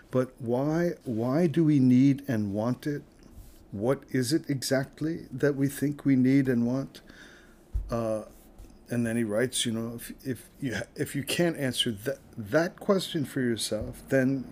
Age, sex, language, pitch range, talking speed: 50-69, male, English, 110-135 Hz, 165 wpm